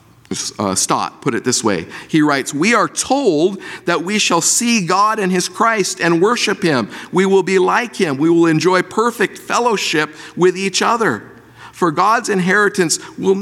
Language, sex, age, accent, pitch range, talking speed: English, male, 50-69, American, 115-185 Hz, 175 wpm